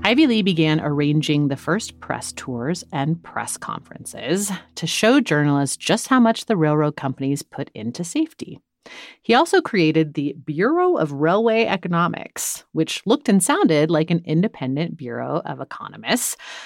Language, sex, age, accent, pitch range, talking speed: English, female, 30-49, American, 145-205 Hz, 150 wpm